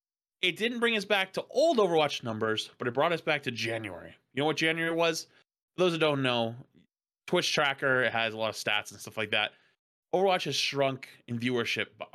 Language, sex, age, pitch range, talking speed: English, male, 20-39, 115-150 Hz, 205 wpm